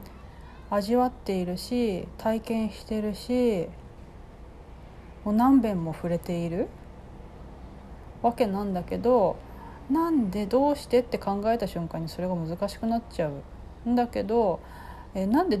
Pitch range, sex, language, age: 165-230 Hz, female, Japanese, 30-49